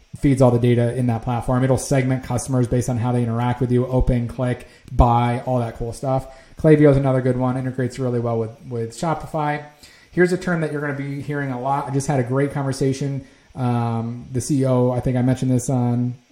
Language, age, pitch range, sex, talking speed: English, 30-49, 125-145 Hz, male, 220 wpm